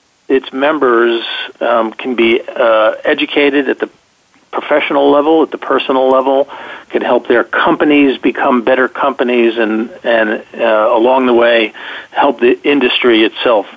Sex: male